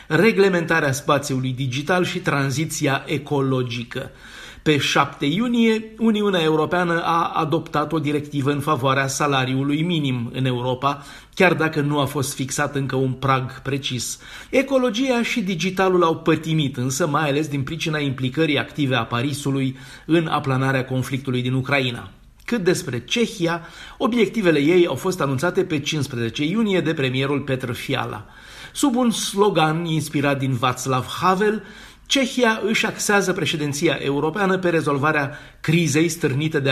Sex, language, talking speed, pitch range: male, Romanian, 135 wpm, 135-185 Hz